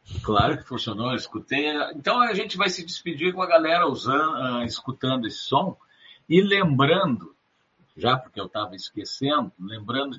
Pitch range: 120-165 Hz